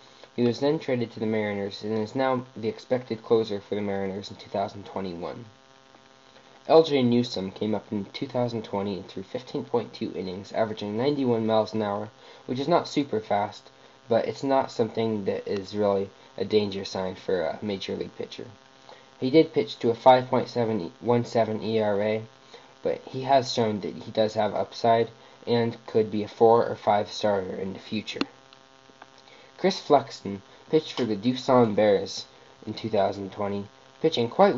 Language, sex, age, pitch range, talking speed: English, male, 20-39, 105-130 Hz, 155 wpm